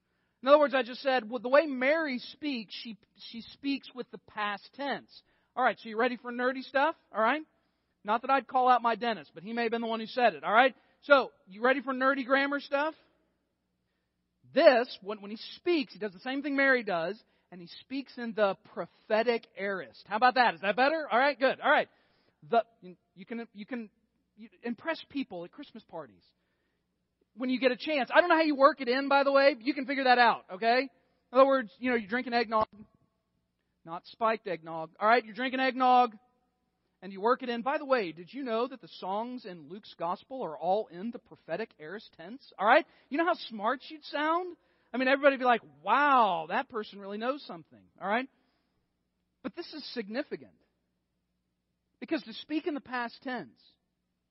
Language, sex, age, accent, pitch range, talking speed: English, male, 40-59, American, 195-265 Hz, 210 wpm